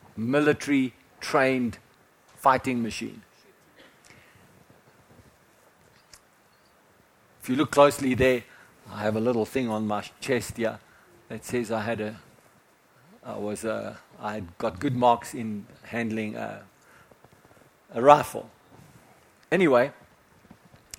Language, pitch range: English, 125-175 Hz